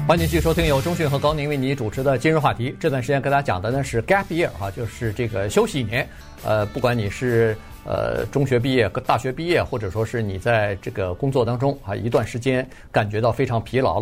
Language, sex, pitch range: Chinese, male, 110-140 Hz